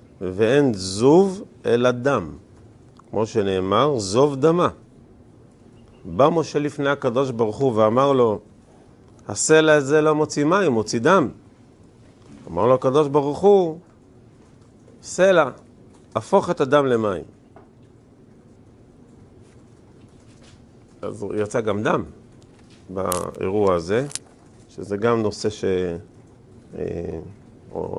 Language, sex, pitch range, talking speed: Hebrew, male, 110-125 Hz, 95 wpm